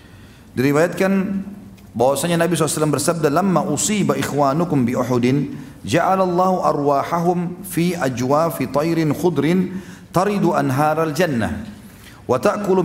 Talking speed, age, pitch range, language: 100 wpm, 40-59, 115-160 Hz, Indonesian